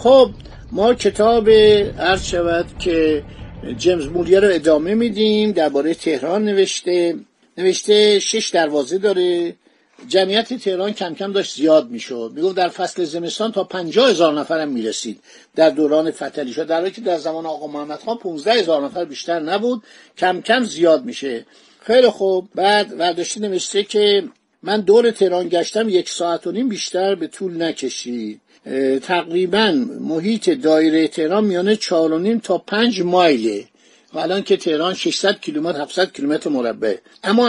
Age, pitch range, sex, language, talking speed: 60-79, 160-205 Hz, male, Persian, 150 wpm